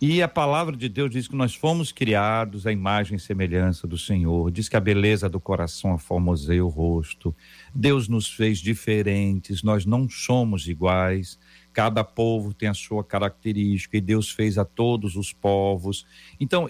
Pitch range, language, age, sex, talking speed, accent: 105-150 Hz, Portuguese, 50-69, male, 170 wpm, Brazilian